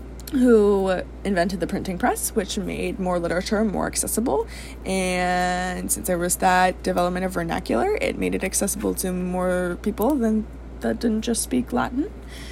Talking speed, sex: 155 wpm, female